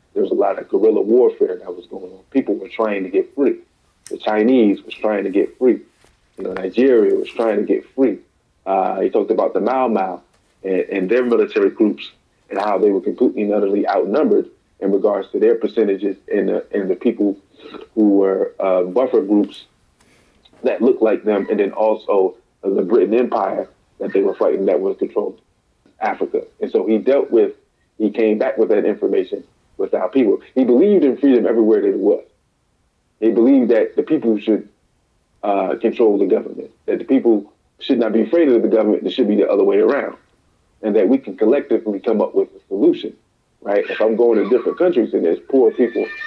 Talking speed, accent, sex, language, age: 200 wpm, American, male, English, 30-49